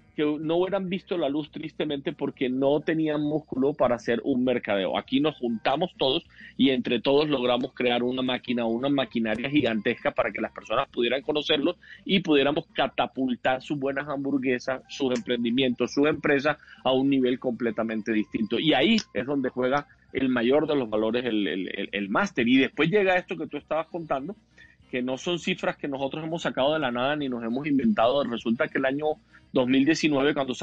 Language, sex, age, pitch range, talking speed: Spanish, male, 40-59, 125-150 Hz, 185 wpm